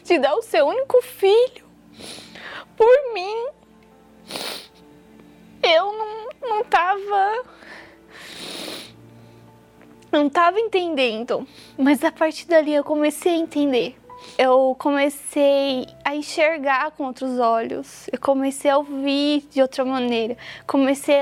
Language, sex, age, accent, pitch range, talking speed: Portuguese, female, 20-39, Brazilian, 260-315 Hz, 105 wpm